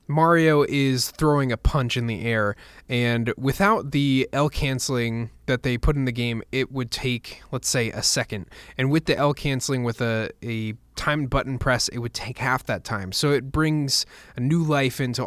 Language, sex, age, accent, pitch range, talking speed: English, male, 20-39, American, 115-135 Hz, 195 wpm